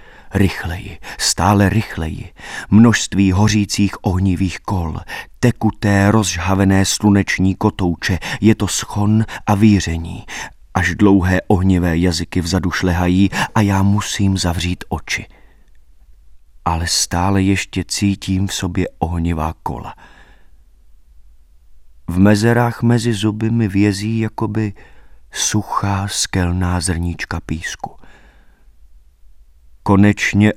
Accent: native